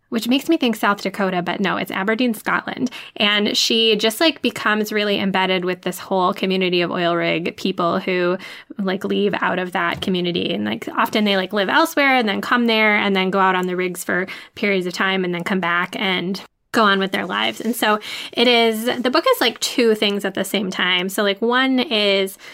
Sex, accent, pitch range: female, American, 190-220 Hz